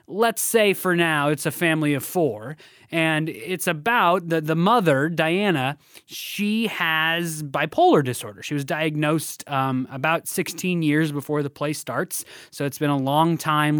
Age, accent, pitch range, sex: 20-39, American, 140-175 Hz, male